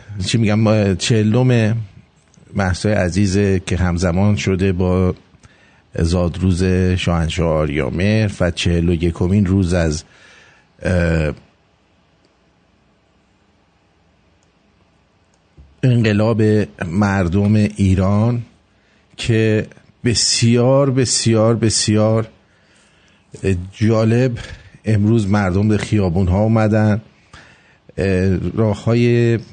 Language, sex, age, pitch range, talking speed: English, male, 50-69, 90-105 Hz, 65 wpm